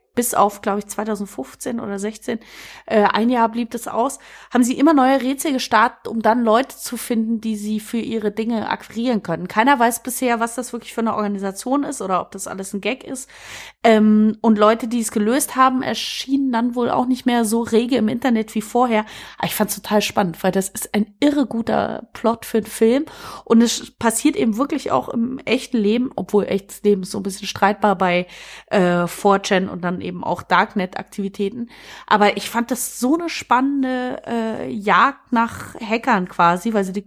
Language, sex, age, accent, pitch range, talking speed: German, female, 30-49, German, 205-245 Hz, 200 wpm